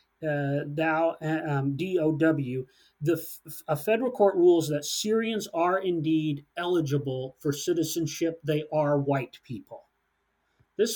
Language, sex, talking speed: English, male, 120 wpm